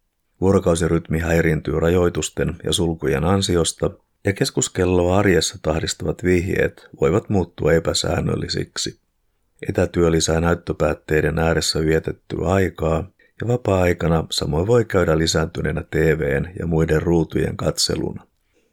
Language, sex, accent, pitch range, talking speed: Finnish, male, native, 80-95 Hz, 95 wpm